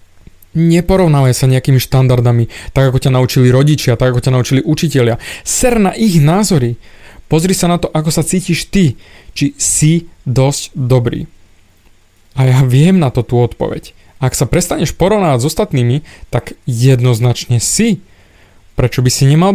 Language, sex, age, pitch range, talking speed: Slovak, male, 20-39, 125-160 Hz, 155 wpm